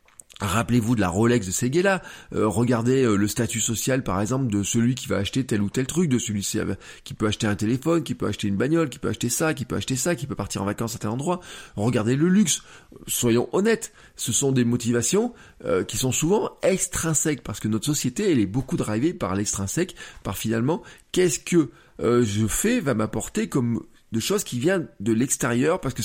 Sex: male